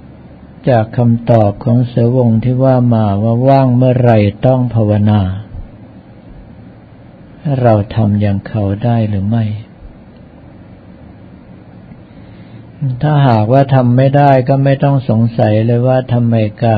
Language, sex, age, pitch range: Thai, male, 60-79, 110-130 Hz